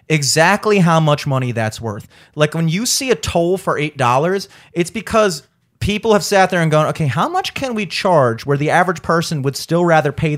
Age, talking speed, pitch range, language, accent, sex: 30-49, 215 wpm, 145-200 Hz, English, American, male